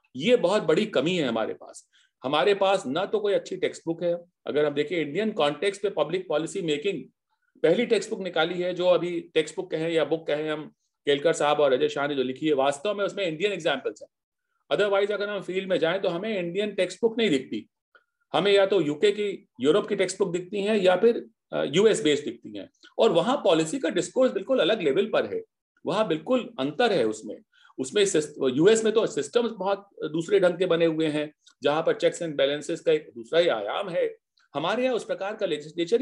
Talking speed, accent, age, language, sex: 215 wpm, native, 40-59, Hindi, male